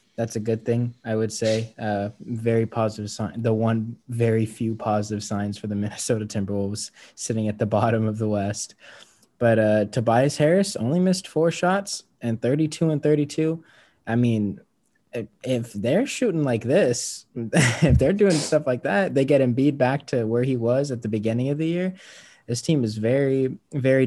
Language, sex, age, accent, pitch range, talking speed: English, male, 20-39, American, 105-120 Hz, 180 wpm